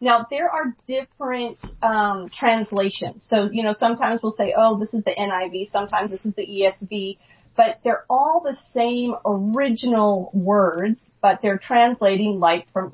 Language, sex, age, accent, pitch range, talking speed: English, female, 30-49, American, 190-230 Hz, 160 wpm